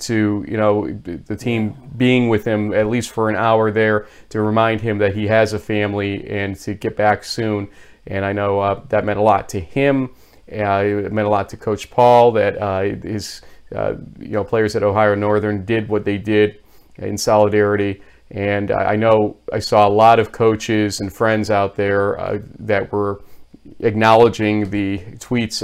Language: English